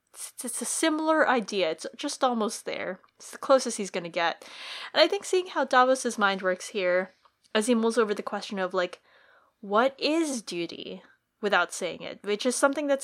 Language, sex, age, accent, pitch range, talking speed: English, female, 20-39, American, 205-285 Hz, 195 wpm